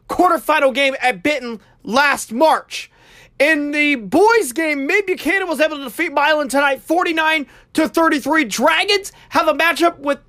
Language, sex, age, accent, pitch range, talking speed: English, male, 30-49, American, 270-335 Hz, 135 wpm